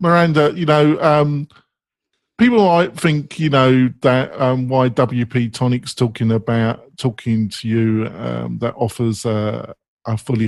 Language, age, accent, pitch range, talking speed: English, 40-59, British, 115-140 Hz, 150 wpm